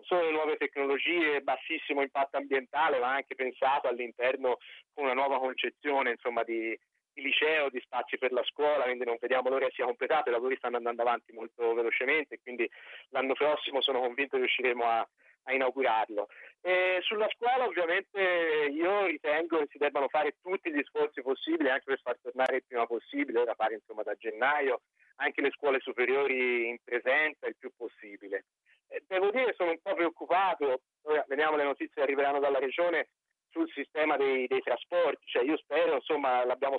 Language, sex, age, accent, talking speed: Italian, male, 30-49, native, 175 wpm